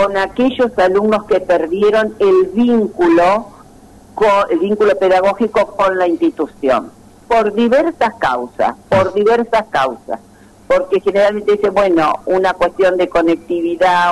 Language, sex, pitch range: Spanish, female, 170-215 Hz